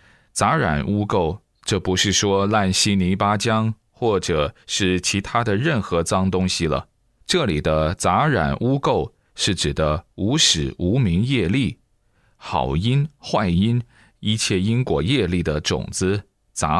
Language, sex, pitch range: Chinese, male, 90-115 Hz